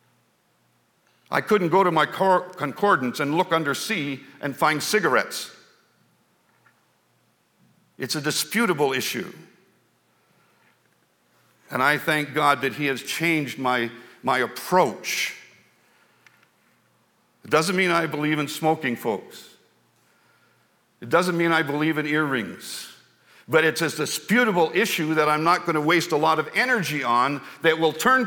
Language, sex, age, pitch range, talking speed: English, male, 60-79, 150-185 Hz, 130 wpm